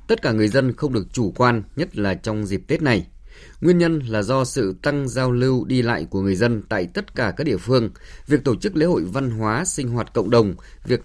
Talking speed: 245 wpm